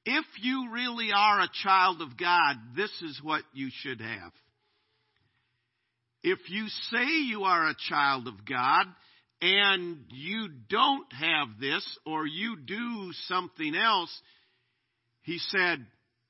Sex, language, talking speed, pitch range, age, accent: male, English, 130 wpm, 145-245 Hz, 50-69, American